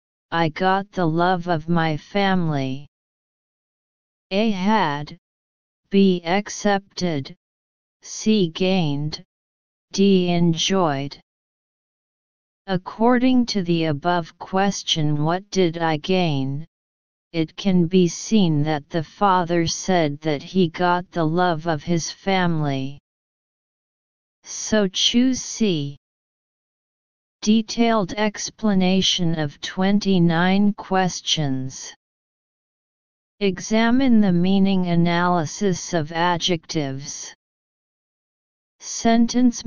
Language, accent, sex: English, American, female